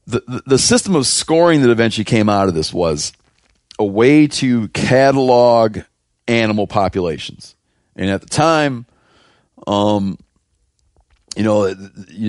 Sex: male